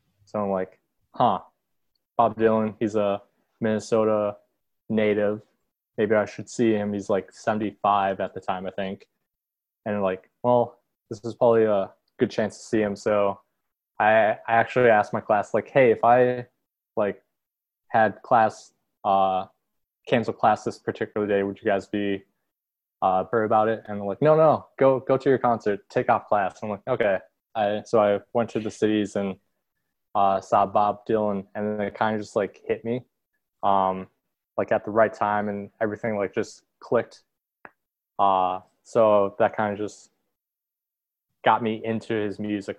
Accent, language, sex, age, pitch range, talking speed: American, English, male, 20-39, 100-115 Hz, 170 wpm